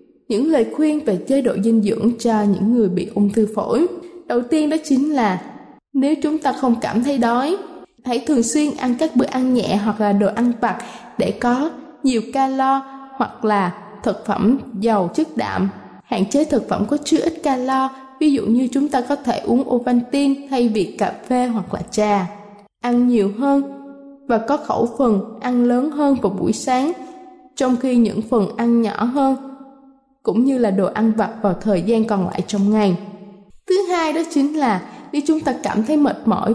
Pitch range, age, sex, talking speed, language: 215-275 Hz, 20-39, female, 195 wpm, Vietnamese